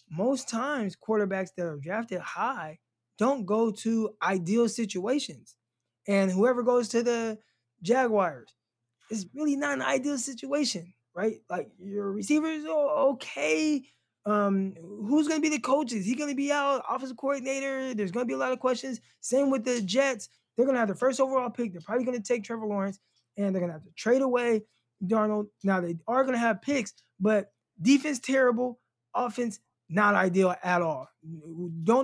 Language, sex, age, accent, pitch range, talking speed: English, male, 20-39, American, 190-260 Hz, 180 wpm